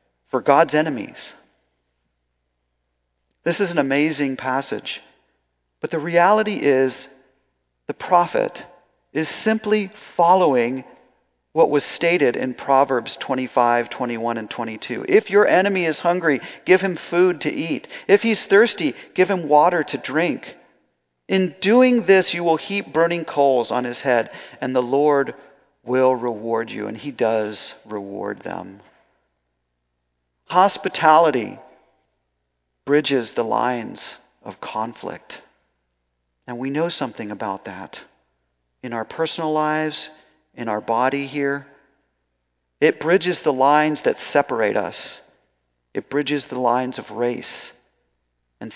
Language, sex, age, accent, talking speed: English, male, 40-59, American, 125 wpm